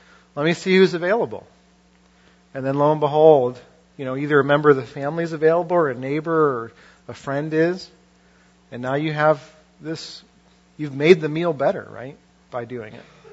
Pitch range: 125-160 Hz